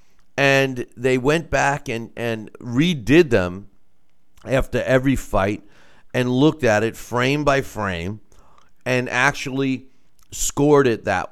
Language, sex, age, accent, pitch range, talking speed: English, male, 50-69, American, 110-140 Hz, 120 wpm